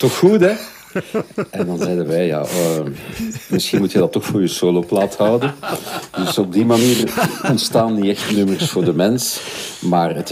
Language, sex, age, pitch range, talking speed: Dutch, male, 50-69, 90-115 Hz, 185 wpm